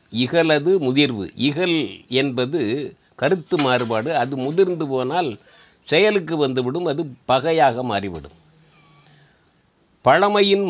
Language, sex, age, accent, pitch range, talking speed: Tamil, male, 50-69, native, 125-160 Hz, 85 wpm